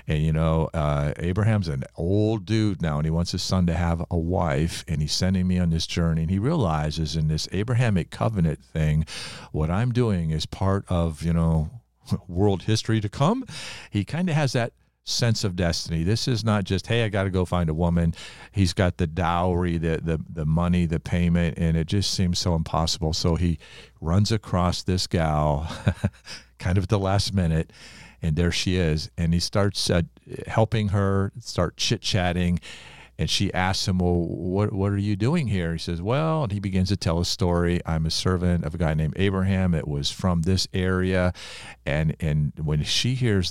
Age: 50-69